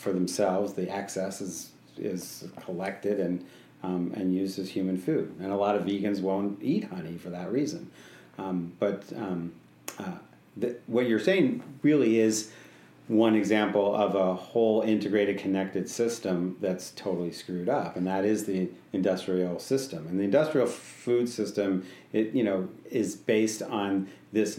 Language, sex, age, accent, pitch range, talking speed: English, male, 40-59, American, 90-105 Hz, 160 wpm